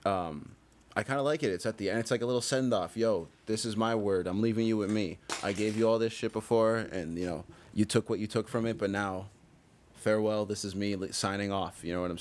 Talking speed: 275 wpm